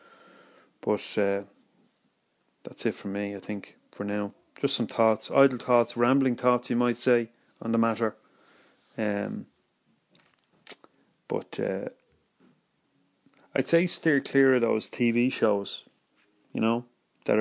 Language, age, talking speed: English, 30-49, 130 wpm